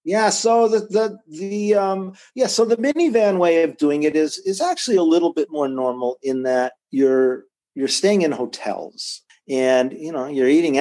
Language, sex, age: English, male, 50-69